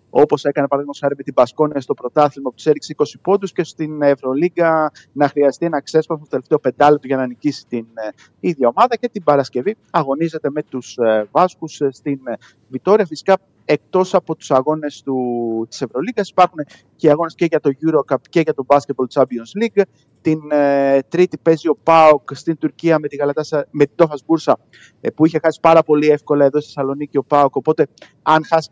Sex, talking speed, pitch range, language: male, 180 wpm, 130-155 Hz, Greek